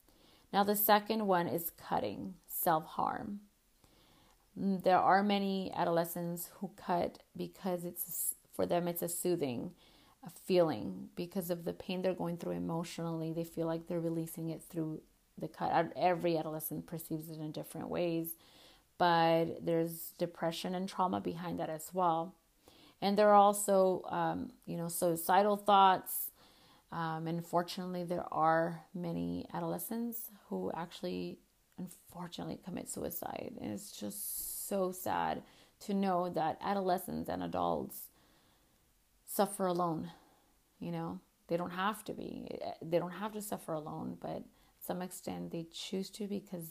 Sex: female